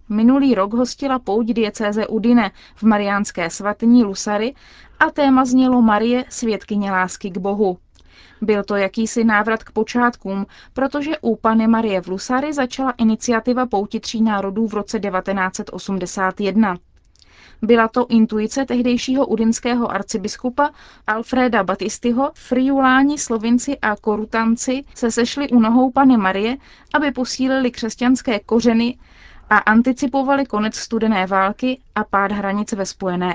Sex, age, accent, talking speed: female, 20-39, native, 125 wpm